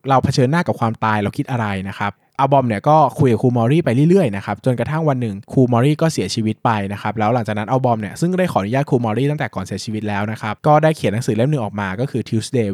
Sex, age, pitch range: male, 20-39, 110-150 Hz